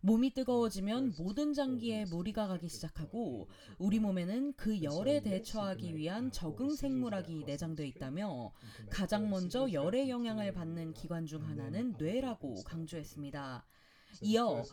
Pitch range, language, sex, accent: 160-235 Hz, Korean, female, native